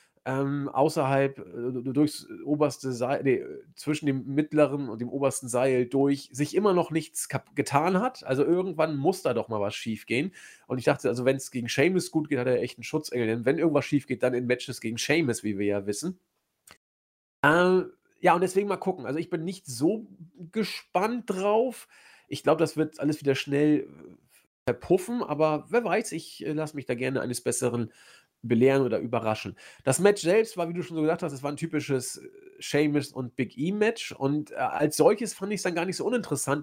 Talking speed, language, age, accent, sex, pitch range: 205 wpm, German, 40-59, German, male, 130-170 Hz